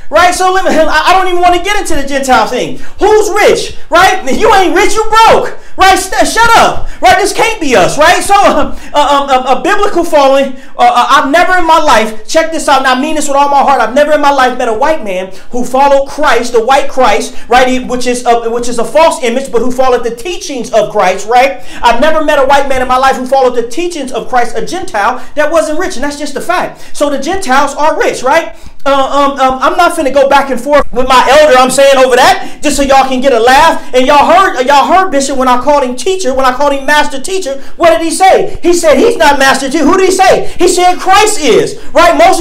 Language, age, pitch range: English, 40-59, 250-335 Hz